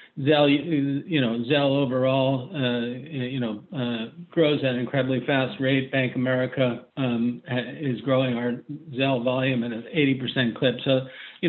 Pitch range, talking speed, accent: 125-145 Hz, 155 wpm, American